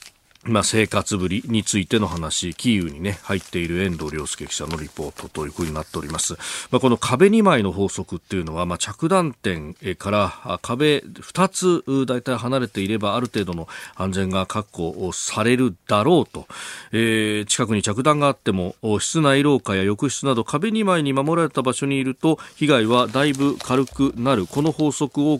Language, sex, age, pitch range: Japanese, male, 40-59, 90-130 Hz